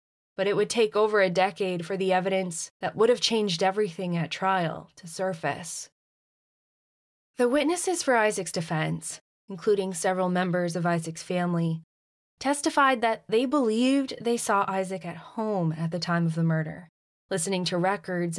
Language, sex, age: English, female, 20-39